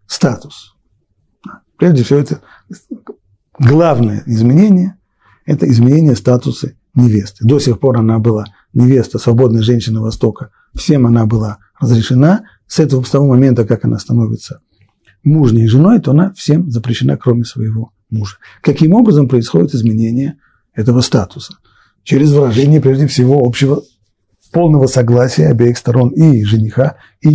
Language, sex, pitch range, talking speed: Russian, male, 110-145 Hz, 130 wpm